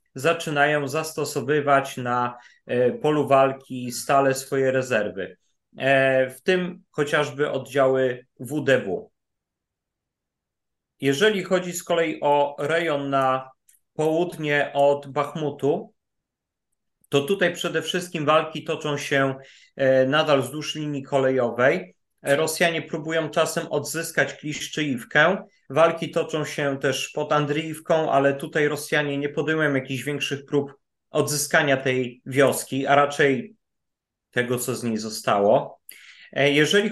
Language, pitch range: Polish, 135-160 Hz